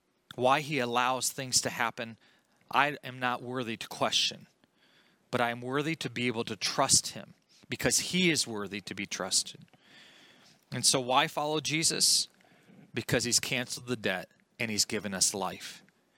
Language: English